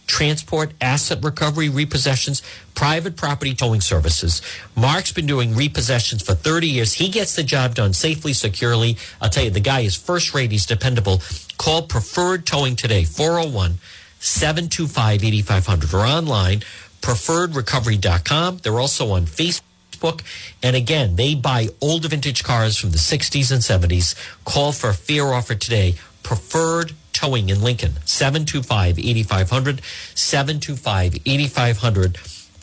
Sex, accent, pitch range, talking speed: male, American, 100-145 Hz, 125 wpm